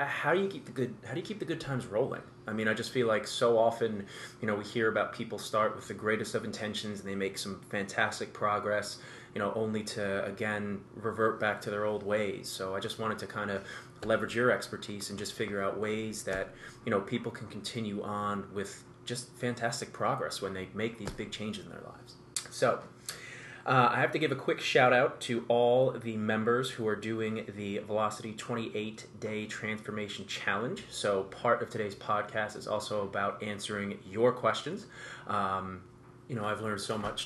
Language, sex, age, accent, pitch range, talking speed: English, male, 20-39, American, 100-120 Hz, 205 wpm